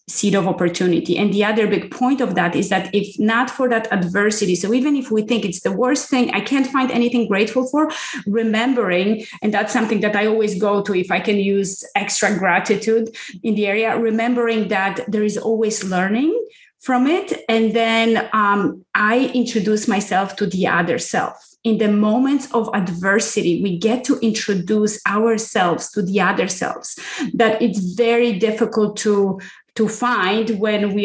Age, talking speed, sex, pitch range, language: 30-49, 175 wpm, female, 200-230 Hz, English